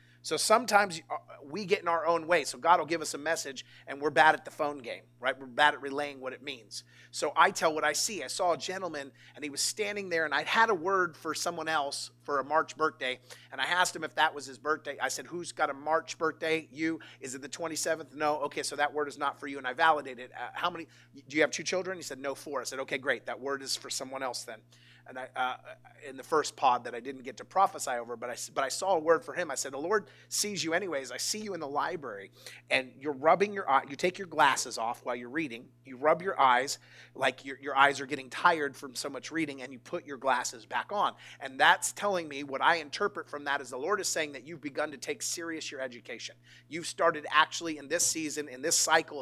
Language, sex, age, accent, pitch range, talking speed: English, male, 30-49, American, 135-165 Hz, 260 wpm